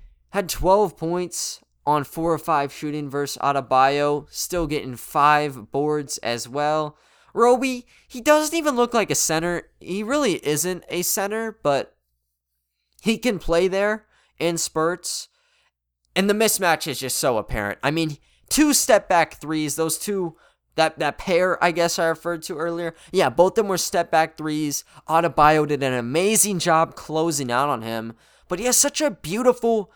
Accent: American